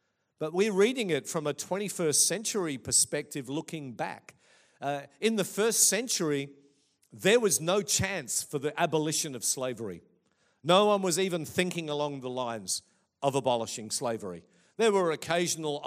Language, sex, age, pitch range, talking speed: English, male, 50-69, 145-190 Hz, 150 wpm